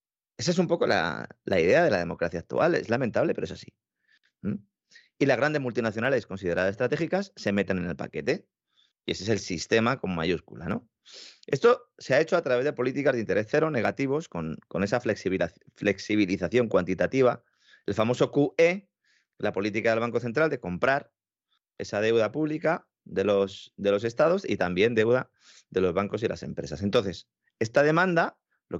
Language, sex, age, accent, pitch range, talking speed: Spanish, male, 30-49, Spanish, 95-135 Hz, 175 wpm